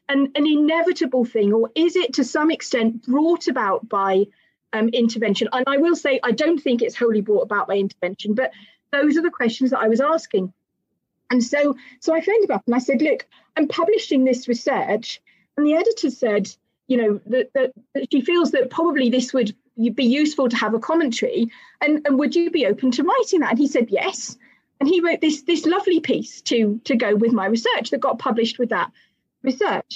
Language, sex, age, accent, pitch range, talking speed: English, female, 30-49, British, 235-325 Hz, 210 wpm